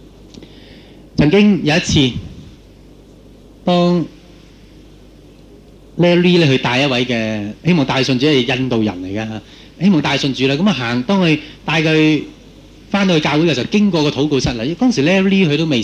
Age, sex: 30-49, male